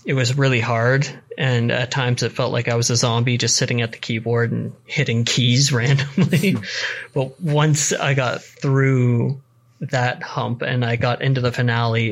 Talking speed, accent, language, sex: 180 wpm, American, English, male